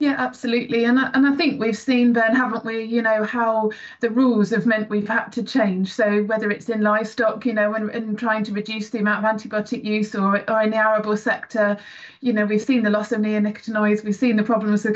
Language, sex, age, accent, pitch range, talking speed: English, female, 30-49, British, 210-245 Hz, 235 wpm